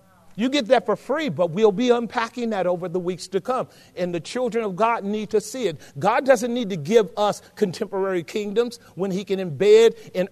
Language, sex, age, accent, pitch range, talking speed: English, male, 40-59, American, 210-280 Hz, 215 wpm